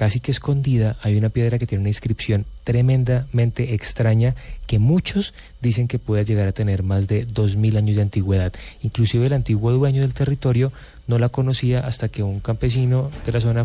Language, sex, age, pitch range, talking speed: English, male, 30-49, 105-125 Hz, 190 wpm